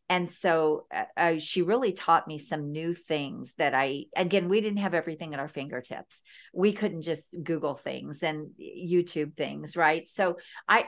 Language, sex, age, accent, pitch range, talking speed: English, female, 50-69, American, 150-205 Hz, 170 wpm